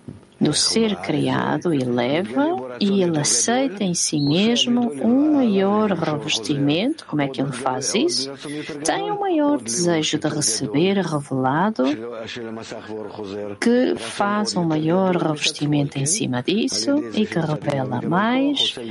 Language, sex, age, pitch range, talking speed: English, female, 50-69, 145-205 Hz, 125 wpm